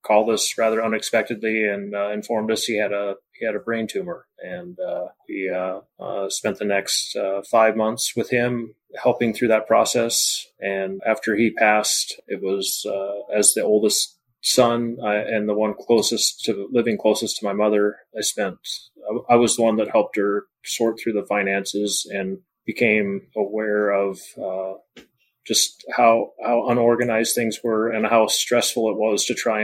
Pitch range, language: 100-115 Hz, English